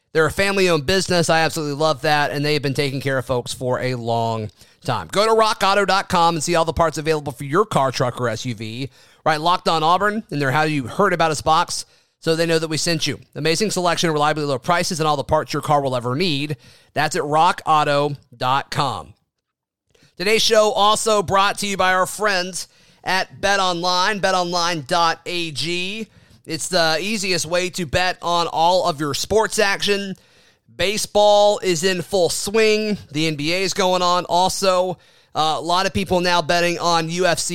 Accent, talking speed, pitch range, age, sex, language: American, 185 wpm, 150-185 Hz, 30-49, male, English